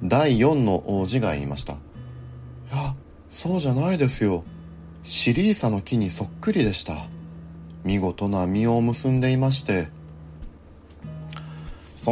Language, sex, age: Japanese, male, 30-49